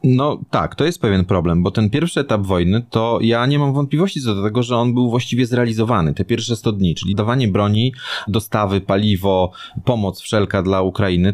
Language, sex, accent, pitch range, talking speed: Polish, male, native, 105-135 Hz, 195 wpm